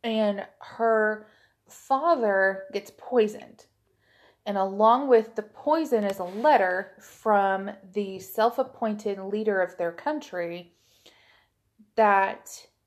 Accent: American